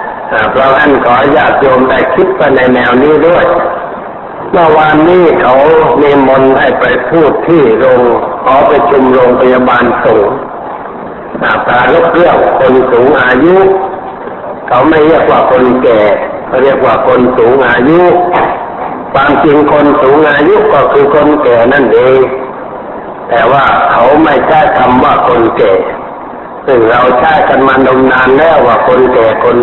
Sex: male